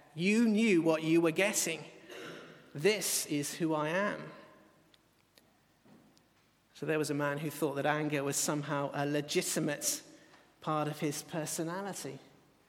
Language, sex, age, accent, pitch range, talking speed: English, male, 40-59, British, 150-180 Hz, 130 wpm